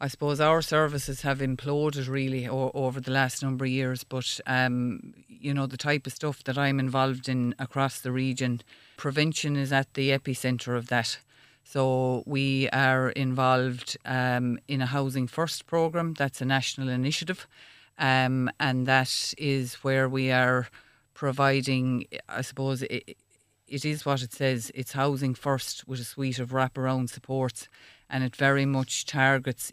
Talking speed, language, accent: 160 wpm, English, Irish